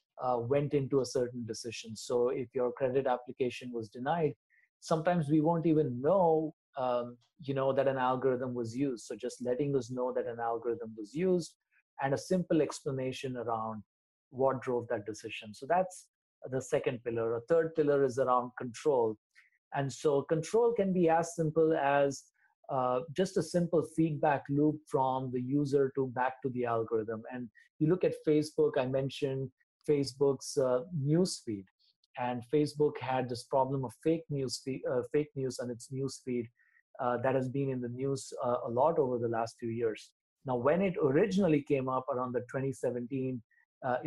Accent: Indian